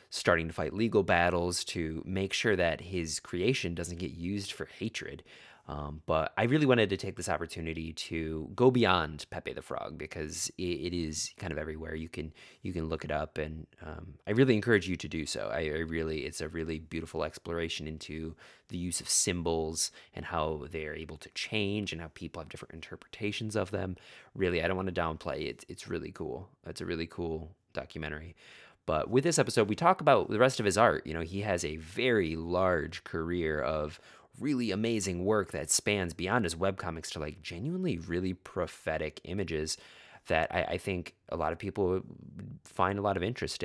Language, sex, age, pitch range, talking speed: English, male, 20-39, 80-95 Hz, 200 wpm